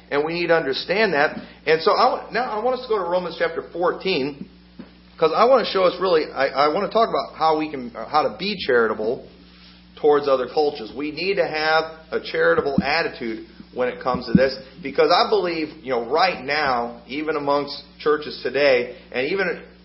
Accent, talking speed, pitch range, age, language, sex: American, 205 wpm, 110-180 Hz, 40-59, English, male